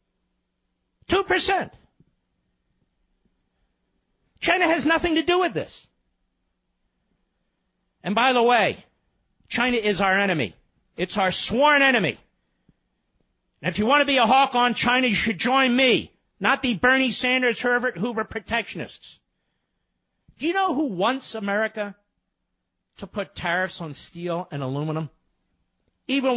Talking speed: 125 wpm